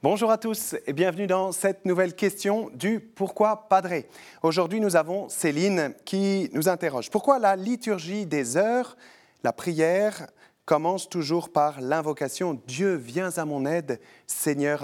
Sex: male